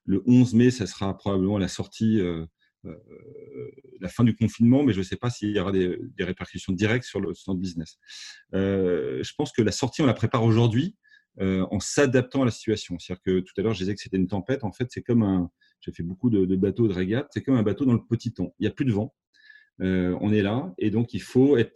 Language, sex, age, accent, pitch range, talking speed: French, male, 40-59, French, 95-125 Hz, 260 wpm